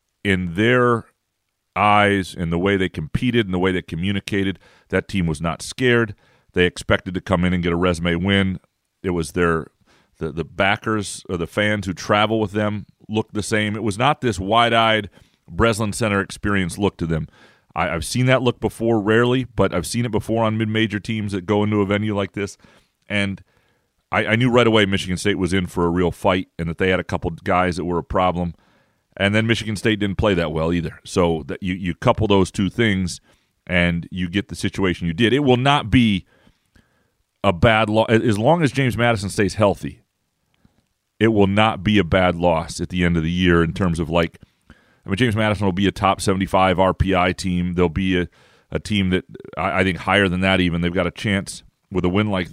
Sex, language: male, English